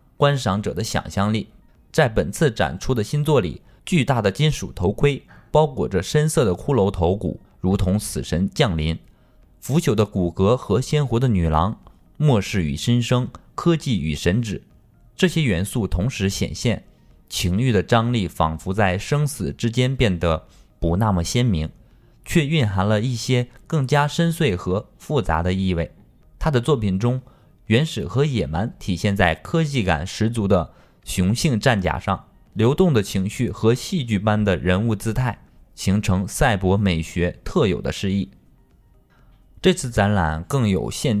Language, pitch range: Chinese, 95-135 Hz